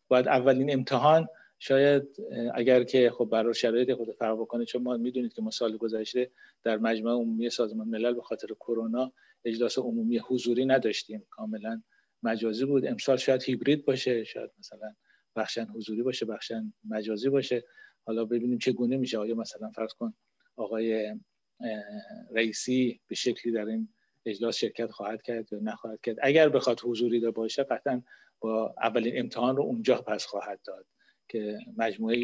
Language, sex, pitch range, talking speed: Persian, male, 110-135 Hz, 160 wpm